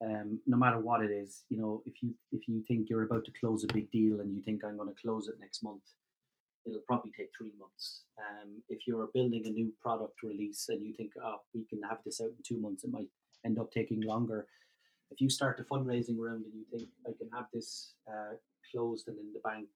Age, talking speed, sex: 30-49, 240 wpm, male